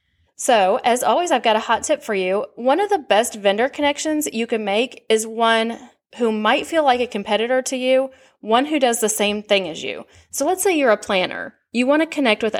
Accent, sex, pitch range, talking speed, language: American, female, 205-260 Hz, 230 wpm, English